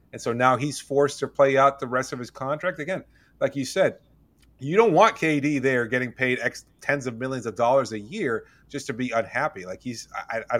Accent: American